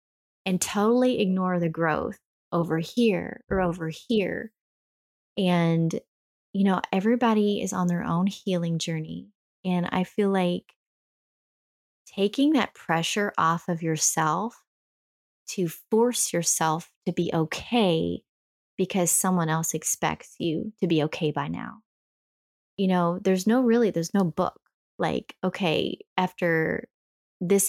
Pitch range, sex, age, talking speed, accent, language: 170-210 Hz, female, 20-39, 125 wpm, American, English